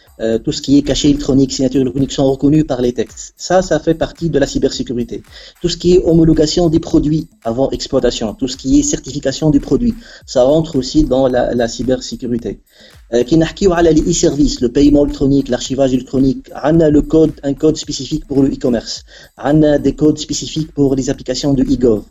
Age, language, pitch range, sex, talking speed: 40-59, Arabic, 130-155 Hz, male, 215 wpm